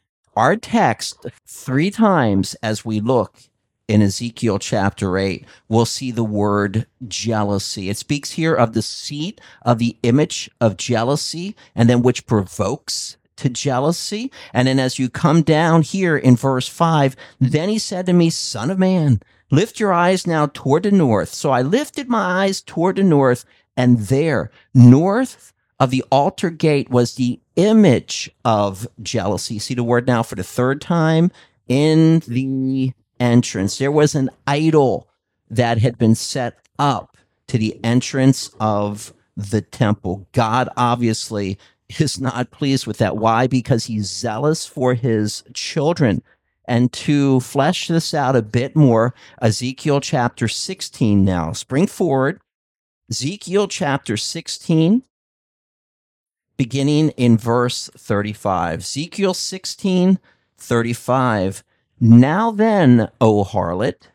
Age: 50-69